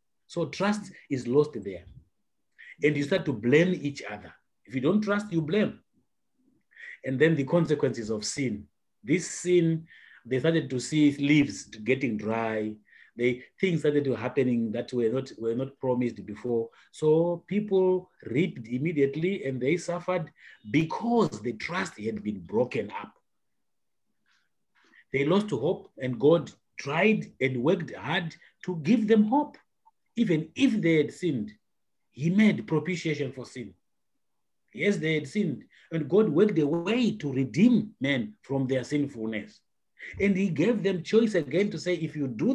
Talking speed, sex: 150 wpm, male